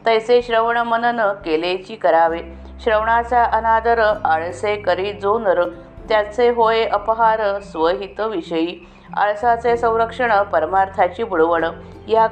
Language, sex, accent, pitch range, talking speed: Marathi, female, native, 180-230 Hz, 100 wpm